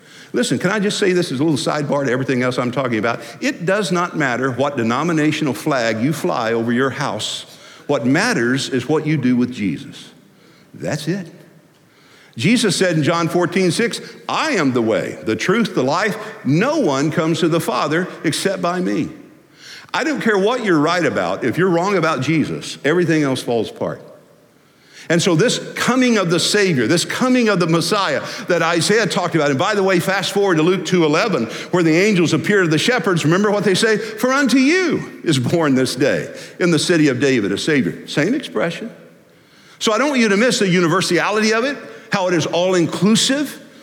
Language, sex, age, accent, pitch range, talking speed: English, male, 50-69, American, 155-205 Hz, 200 wpm